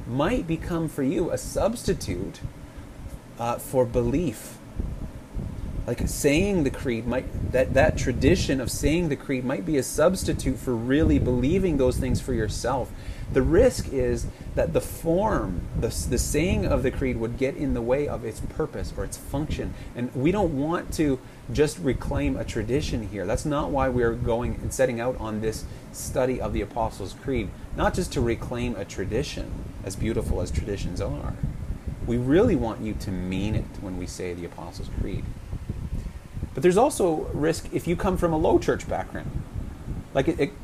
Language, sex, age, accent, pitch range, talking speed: English, male, 30-49, American, 100-130 Hz, 175 wpm